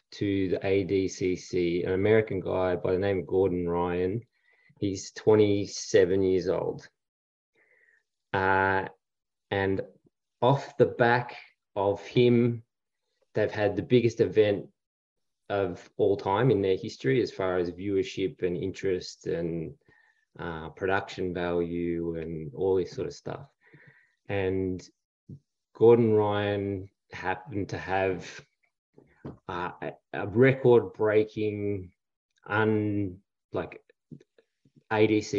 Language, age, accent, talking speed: English, 20-39, Australian, 105 wpm